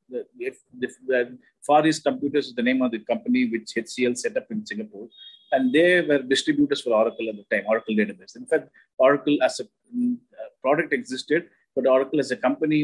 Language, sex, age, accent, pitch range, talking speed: English, male, 50-69, Indian, 125-155 Hz, 195 wpm